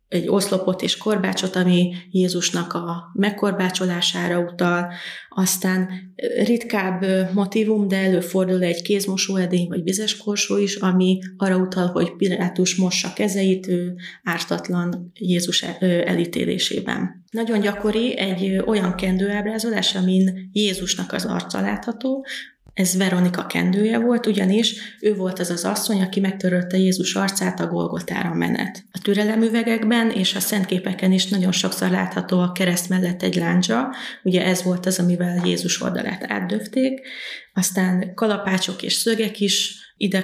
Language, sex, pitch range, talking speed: Hungarian, female, 180-205 Hz, 130 wpm